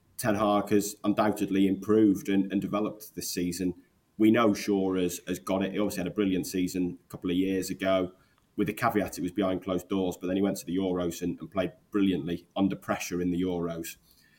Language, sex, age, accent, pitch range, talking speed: English, male, 20-39, British, 90-100 Hz, 215 wpm